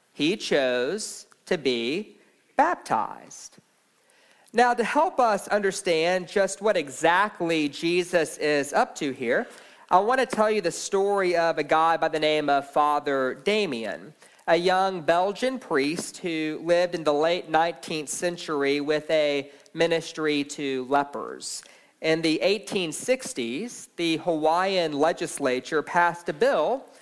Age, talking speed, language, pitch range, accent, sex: 40-59, 130 wpm, English, 155-215 Hz, American, male